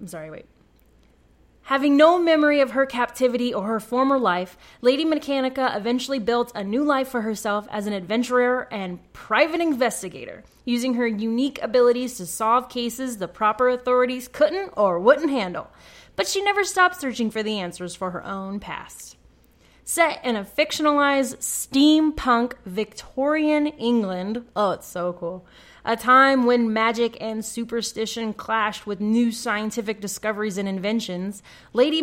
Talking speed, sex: 150 wpm, female